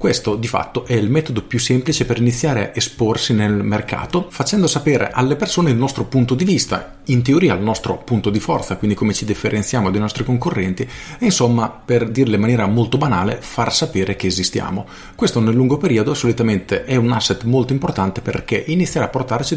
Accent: native